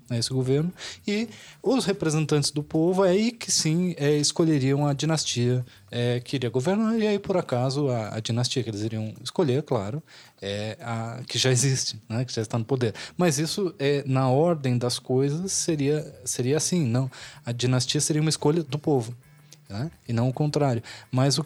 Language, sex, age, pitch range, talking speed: Portuguese, male, 20-39, 120-150 Hz, 185 wpm